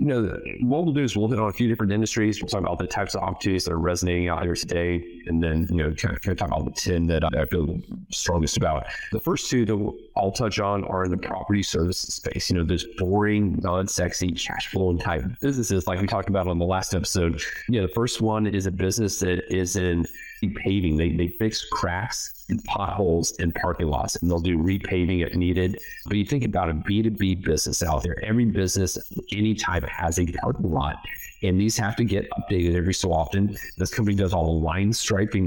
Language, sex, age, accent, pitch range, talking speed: English, male, 40-59, American, 85-105 Hz, 225 wpm